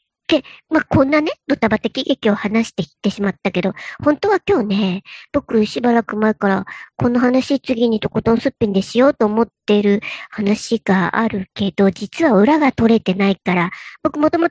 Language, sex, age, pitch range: Japanese, male, 50-69, 205-300 Hz